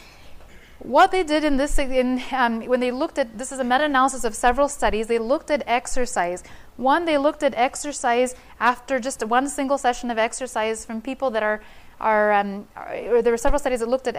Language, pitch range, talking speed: English, 230-270 Hz, 205 wpm